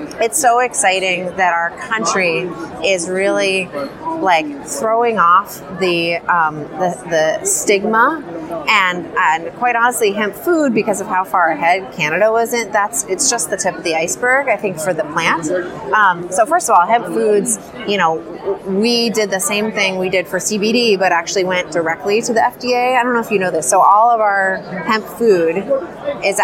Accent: American